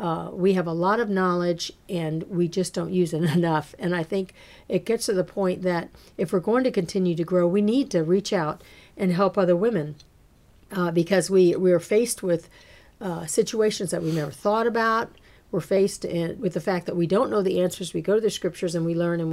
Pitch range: 165-195 Hz